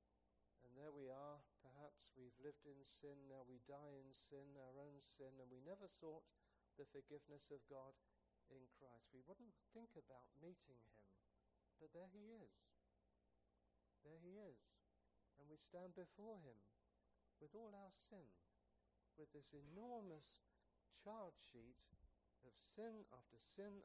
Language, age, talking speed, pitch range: English, 60-79, 150 wpm, 110-160 Hz